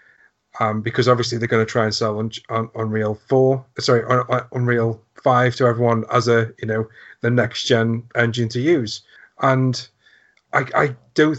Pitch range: 110-125 Hz